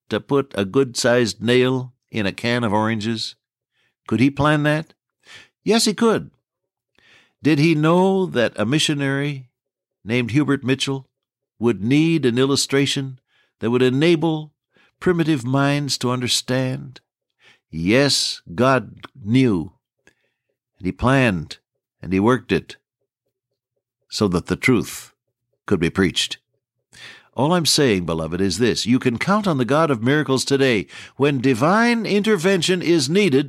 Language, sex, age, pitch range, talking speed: English, male, 60-79, 120-165 Hz, 135 wpm